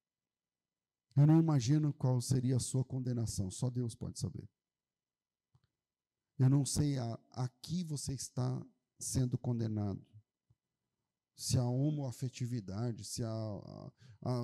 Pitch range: 125-210 Hz